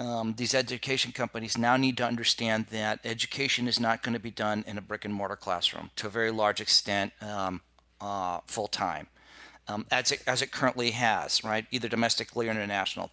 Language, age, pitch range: English, 40-59, 100-120 Hz